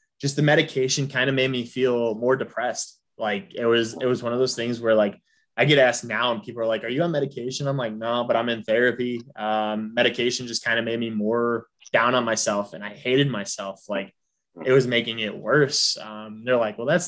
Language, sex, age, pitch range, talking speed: English, male, 20-39, 105-125 Hz, 230 wpm